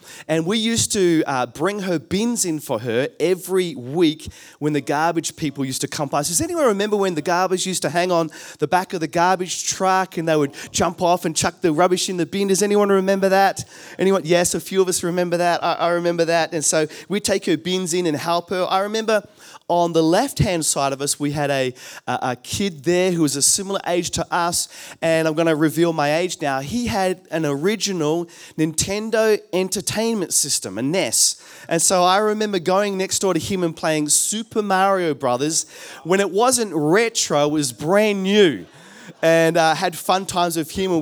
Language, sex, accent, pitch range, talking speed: English, male, Australian, 160-190 Hz, 210 wpm